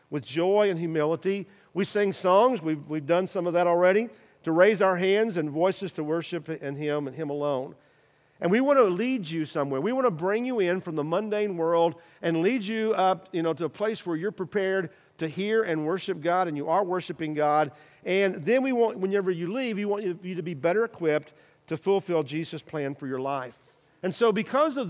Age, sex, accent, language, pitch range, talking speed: 50-69, male, American, English, 160-215 Hz, 220 wpm